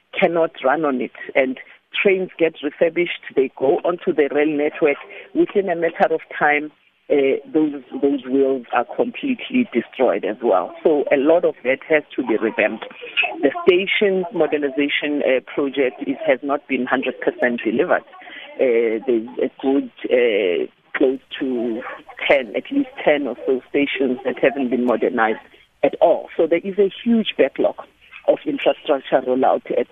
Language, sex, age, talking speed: English, female, 50-69, 160 wpm